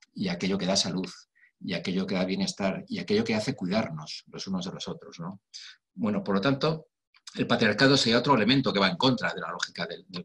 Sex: male